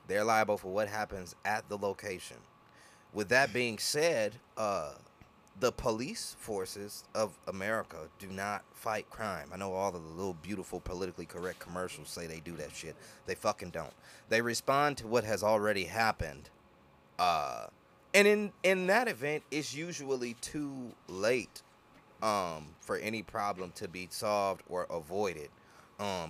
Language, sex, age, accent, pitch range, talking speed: English, male, 30-49, American, 95-130 Hz, 150 wpm